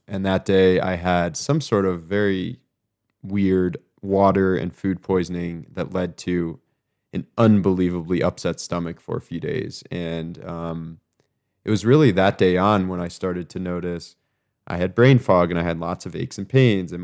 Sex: male